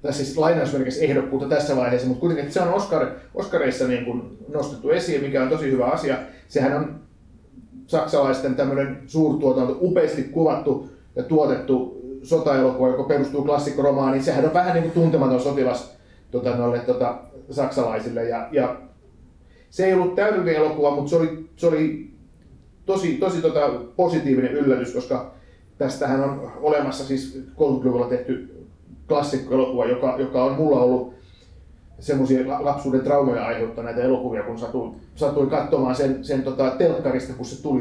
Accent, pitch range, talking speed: native, 125-150 Hz, 145 wpm